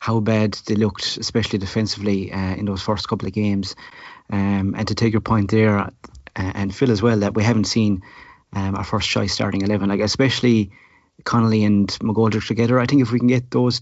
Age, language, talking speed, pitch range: 30-49, English, 205 wpm, 100-115 Hz